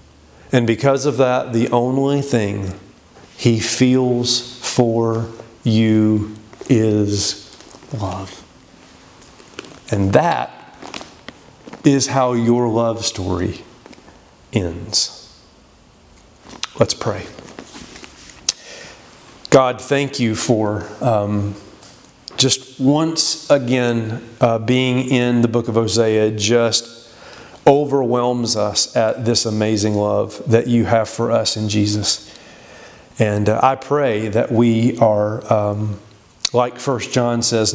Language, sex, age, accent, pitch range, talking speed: English, male, 40-59, American, 110-125 Hz, 100 wpm